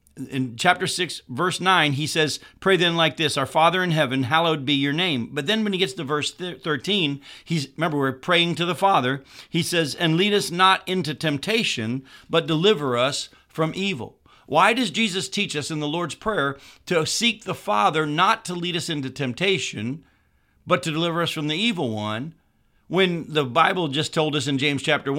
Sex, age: male, 50-69